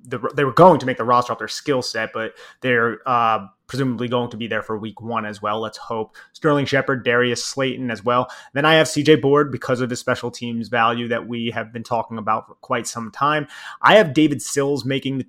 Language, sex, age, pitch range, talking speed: English, male, 20-39, 120-140 Hz, 235 wpm